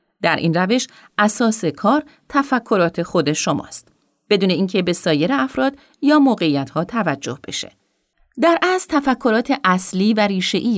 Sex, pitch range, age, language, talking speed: female, 160-245 Hz, 40-59, Persian, 130 wpm